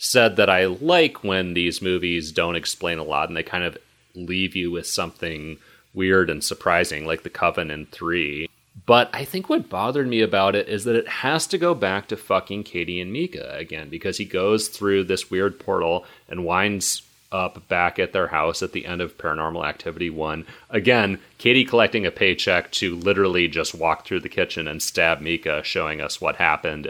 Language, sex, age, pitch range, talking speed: English, male, 30-49, 85-110 Hz, 195 wpm